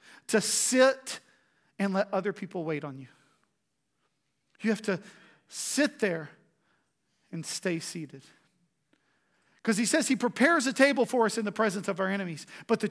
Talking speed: 160 wpm